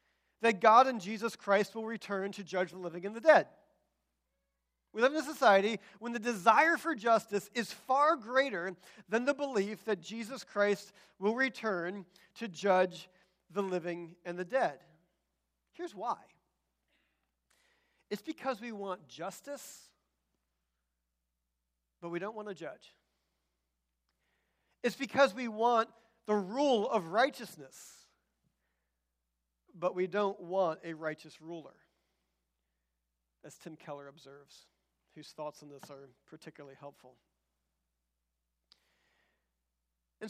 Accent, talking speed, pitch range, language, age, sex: American, 120 wpm, 145-235 Hz, English, 40-59, male